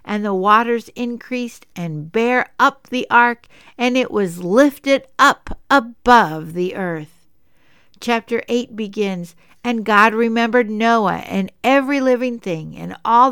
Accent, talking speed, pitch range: American, 135 wpm, 180-240 Hz